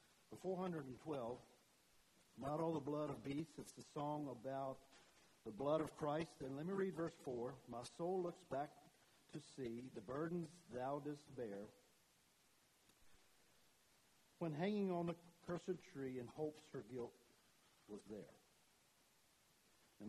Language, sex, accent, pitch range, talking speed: English, male, American, 125-155 Hz, 135 wpm